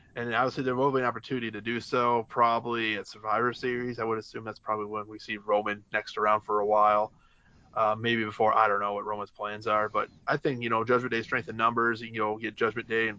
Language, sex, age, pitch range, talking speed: English, male, 20-39, 110-130 Hz, 245 wpm